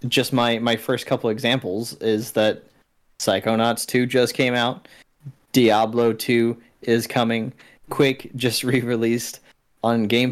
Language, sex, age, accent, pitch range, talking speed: English, male, 20-39, American, 110-125 Hz, 130 wpm